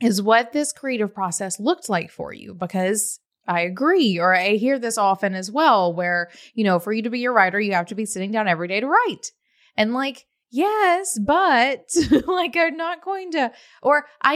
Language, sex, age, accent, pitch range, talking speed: English, female, 20-39, American, 180-235 Hz, 205 wpm